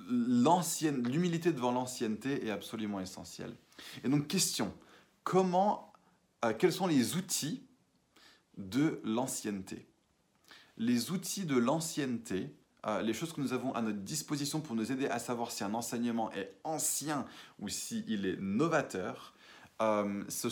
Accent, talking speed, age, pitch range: French, 140 wpm, 20-39, 110-150 Hz